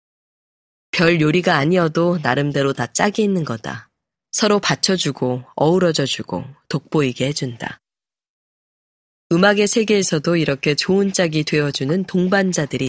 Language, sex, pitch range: Korean, female, 135-175 Hz